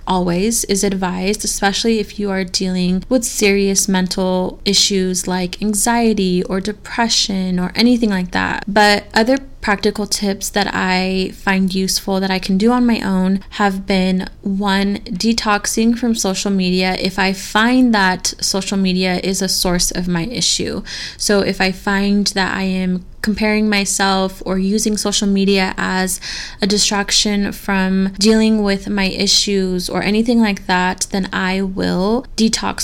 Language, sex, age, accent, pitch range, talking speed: English, female, 20-39, American, 185-210 Hz, 150 wpm